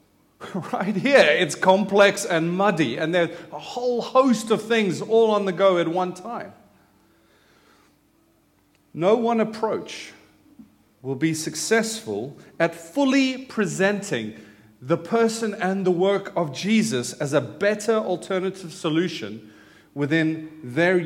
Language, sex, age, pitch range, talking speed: English, male, 40-59, 145-210 Hz, 125 wpm